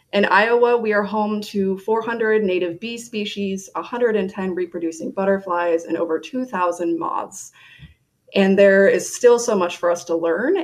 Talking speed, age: 150 wpm, 20-39